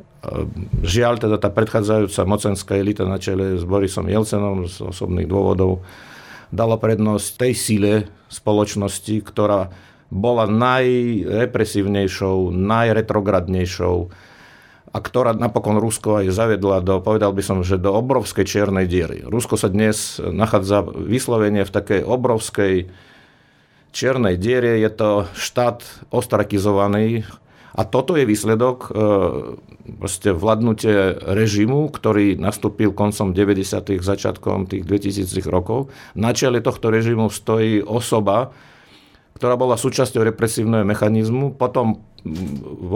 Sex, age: male, 50-69